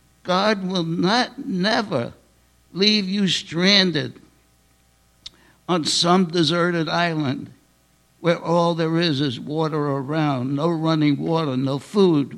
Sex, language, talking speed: male, English, 110 wpm